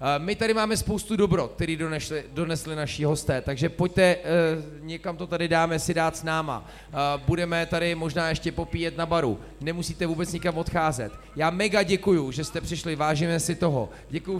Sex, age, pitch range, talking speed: male, 30-49, 165-210 Hz, 180 wpm